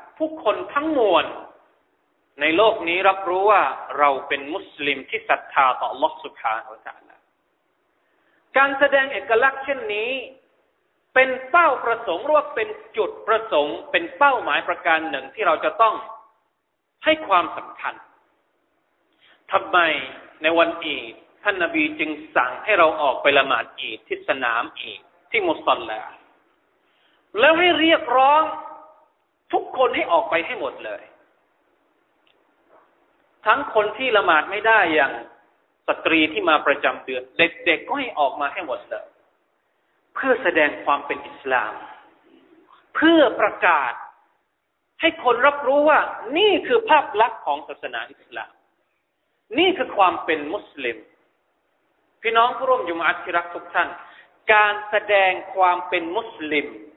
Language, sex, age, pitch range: Thai, male, 30-49, 195-320 Hz